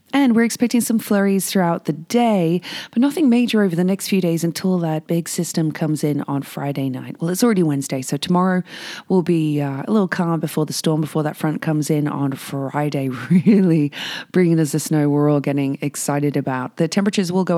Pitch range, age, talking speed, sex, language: 145-185 Hz, 30-49, 210 wpm, female, English